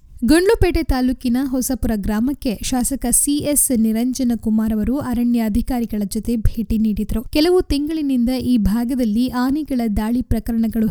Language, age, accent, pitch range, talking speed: Kannada, 10-29, native, 225-270 Hz, 110 wpm